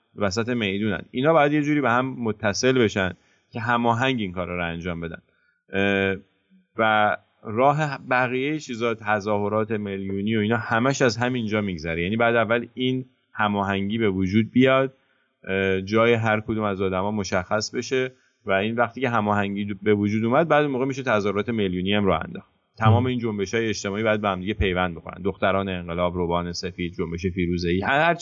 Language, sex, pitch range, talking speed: English, male, 95-120 Hz, 160 wpm